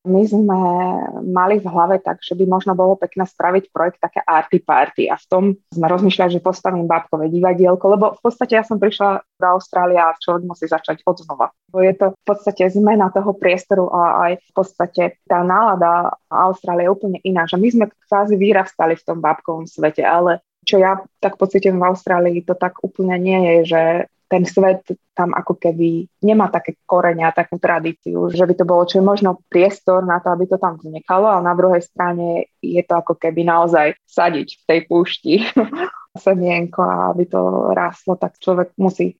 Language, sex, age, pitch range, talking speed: Slovak, female, 20-39, 175-190 Hz, 190 wpm